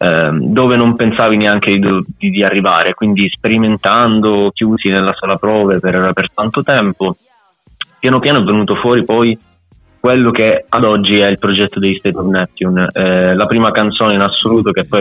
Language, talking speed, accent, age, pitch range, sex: Italian, 170 wpm, native, 20-39, 90-110 Hz, male